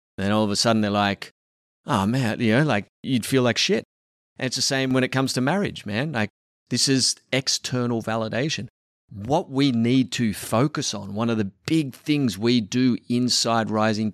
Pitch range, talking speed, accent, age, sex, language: 105-130 Hz, 195 wpm, Australian, 30-49, male, English